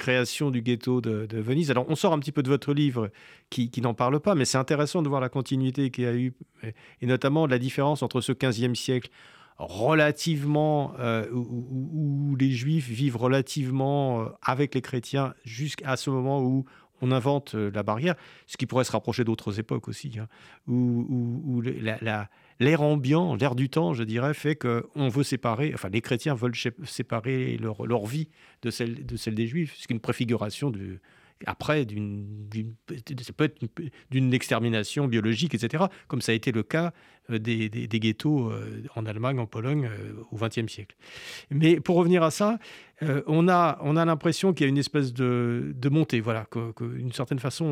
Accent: French